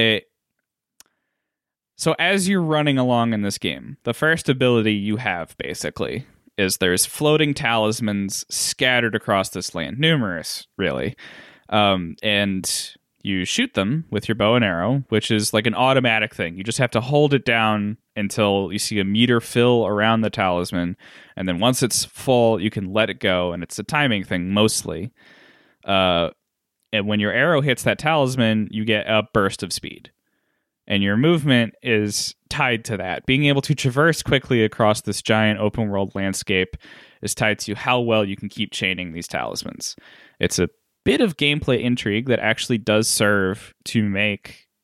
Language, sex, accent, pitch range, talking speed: English, male, American, 100-125 Hz, 170 wpm